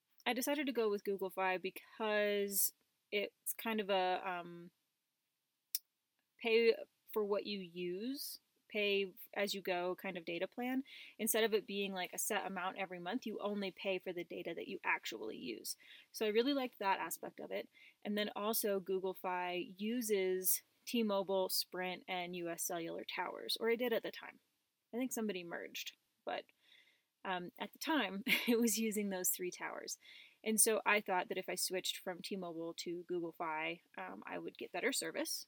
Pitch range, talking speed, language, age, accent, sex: 180-220 Hz, 180 wpm, English, 20-39, American, female